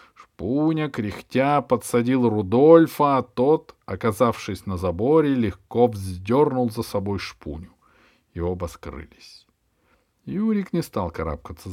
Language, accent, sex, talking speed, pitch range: Russian, native, male, 105 wpm, 90-125 Hz